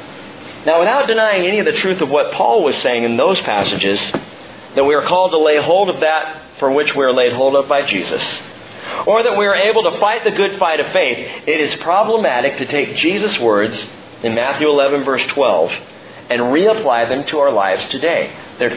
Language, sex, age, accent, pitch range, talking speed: English, male, 50-69, American, 145-215 Hz, 210 wpm